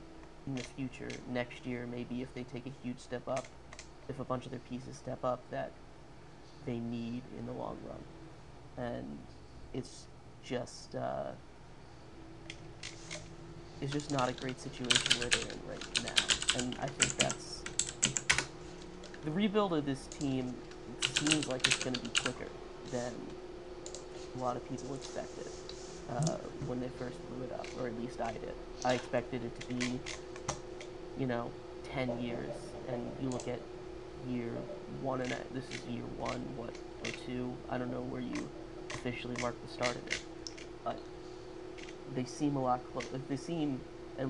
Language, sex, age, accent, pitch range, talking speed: English, male, 30-49, American, 120-135 Hz, 165 wpm